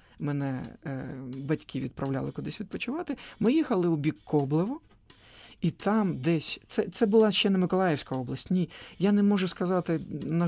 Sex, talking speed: male, 155 wpm